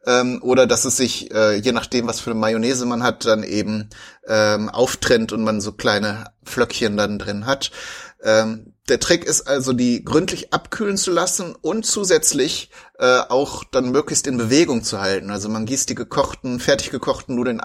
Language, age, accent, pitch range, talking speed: German, 30-49, German, 115-140 Hz, 175 wpm